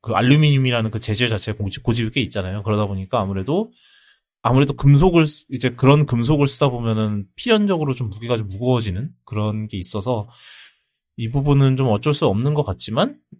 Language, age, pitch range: Korean, 20-39, 110-155 Hz